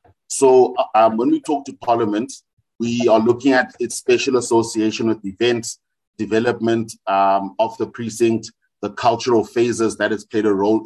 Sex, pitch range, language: male, 105-115 Hz, English